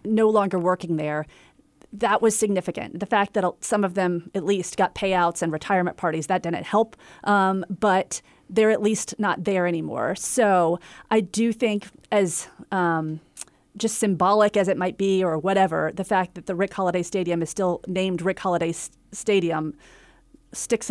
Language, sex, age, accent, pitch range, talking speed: English, female, 30-49, American, 175-215 Hz, 170 wpm